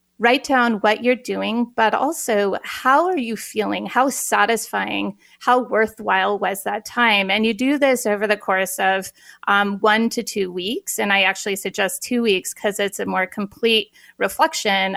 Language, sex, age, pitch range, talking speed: English, female, 30-49, 195-255 Hz, 170 wpm